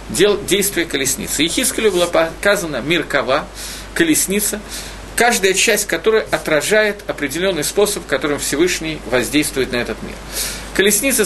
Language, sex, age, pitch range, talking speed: Russian, male, 50-69, 140-210 Hz, 115 wpm